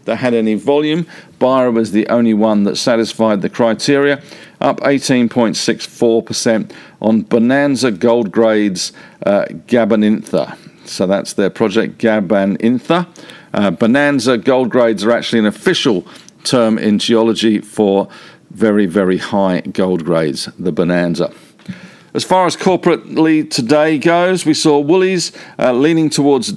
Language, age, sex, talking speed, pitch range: English, 50-69, male, 130 wpm, 110-140 Hz